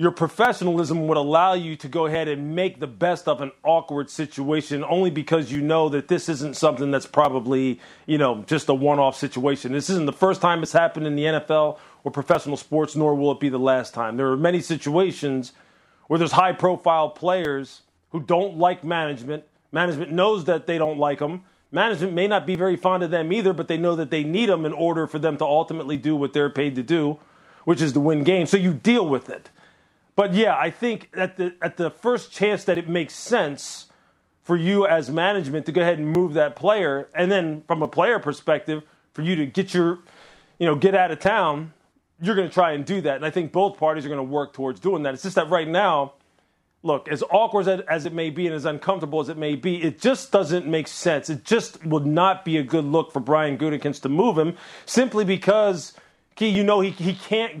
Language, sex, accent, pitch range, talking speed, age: English, male, American, 150-180 Hz, 225 wpm, 40-59